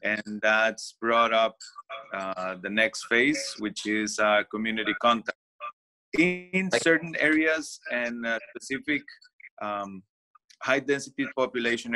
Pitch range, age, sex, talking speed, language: 110-140 Hz, 30-49, male, 115 wpm, English